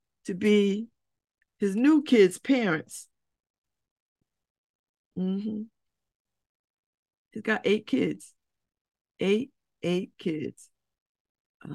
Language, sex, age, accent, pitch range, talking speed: English, female, 50-69, American, 155-215 Hz, 70 wpm